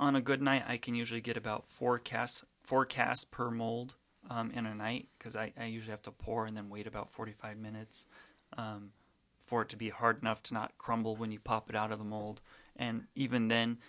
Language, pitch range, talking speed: English, 110-125 Hz, 230 wpm